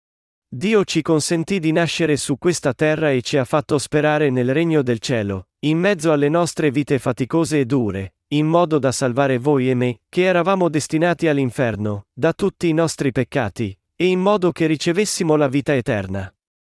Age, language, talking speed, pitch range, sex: 40-59, Italian, 175 wpm, 125-165 Hz, male